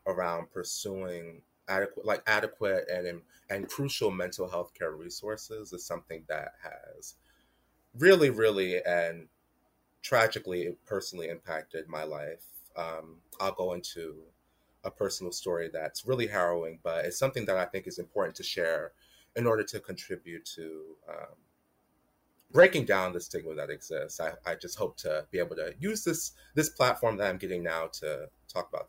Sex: male